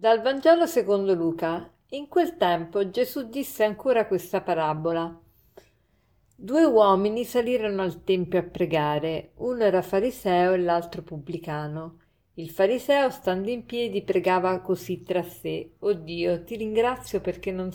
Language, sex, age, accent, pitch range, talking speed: Italian, female, 50-69, native, 170-220 Hz, 135 wpm